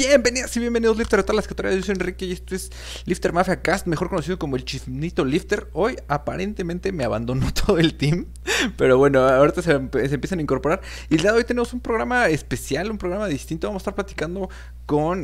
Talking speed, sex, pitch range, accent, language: 215 wpm, male, 125-180 Hz, Mexican, Spanish